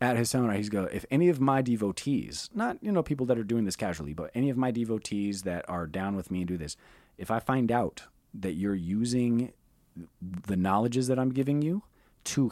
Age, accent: 30-49, American